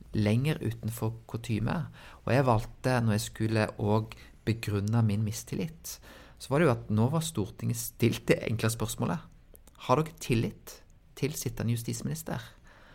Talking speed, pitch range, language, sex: 145 wpm, 110-120 Hz, English, male